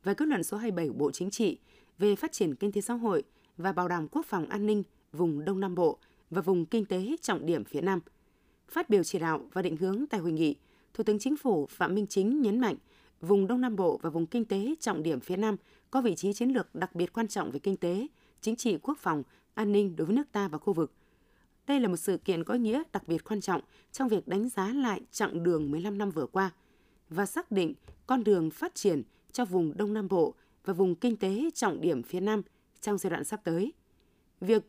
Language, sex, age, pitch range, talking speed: Vietnamese, female, 20-39, 180-225 Hz, 240 wpm